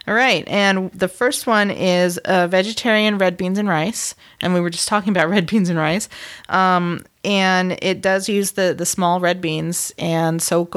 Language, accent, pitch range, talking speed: English, American, 170-195 Hz, 195 wpm